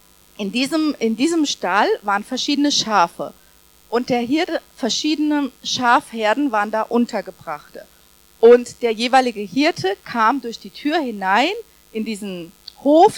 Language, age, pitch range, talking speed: German, 40-59, 195-285 Hz, 125 wpm